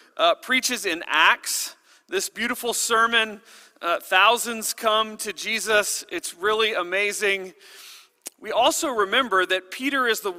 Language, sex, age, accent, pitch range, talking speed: English, male, 40-59, American, 175-245 Hz, 125 wpm